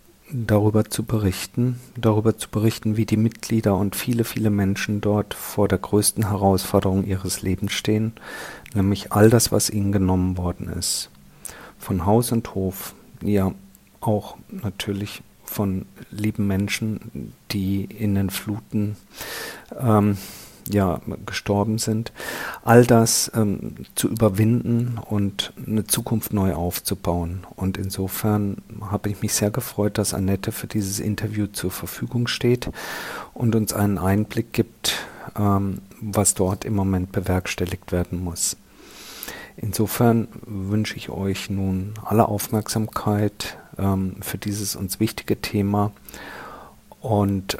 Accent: German